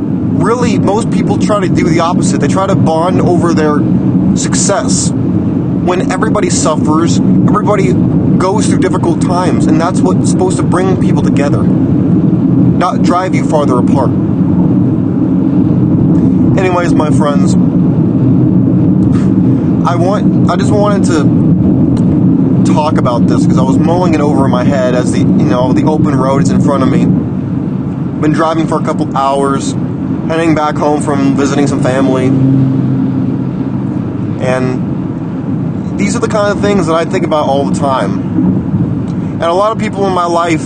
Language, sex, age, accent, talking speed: English, male, 30-49, American, 155 wpm